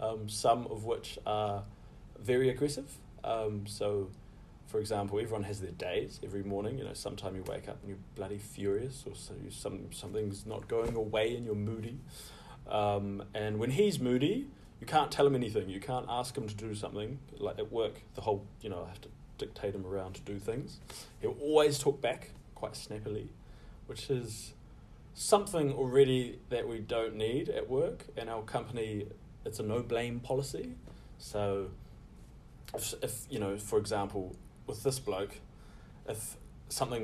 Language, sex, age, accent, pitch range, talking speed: English, male, 20-39, New Zealand, 100-125 Hz, 170 wpm